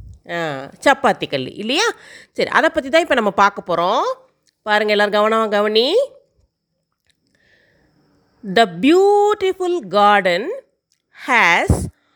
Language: Tamil